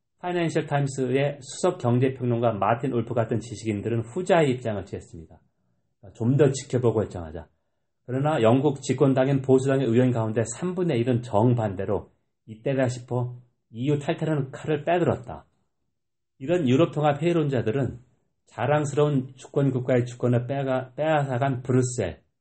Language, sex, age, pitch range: Korean, male, 40-59, 115-135 Hz